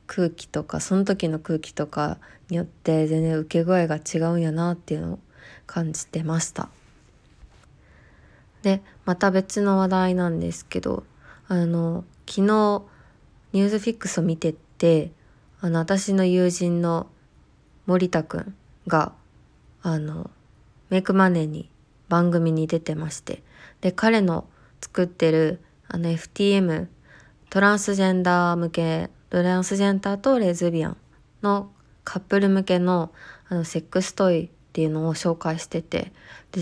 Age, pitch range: 20-39, 160-185 Hz